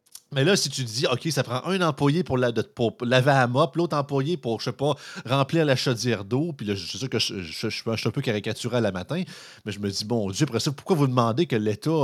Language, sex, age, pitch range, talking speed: French, male, 30-49, 115-150 Hz, 260 wpm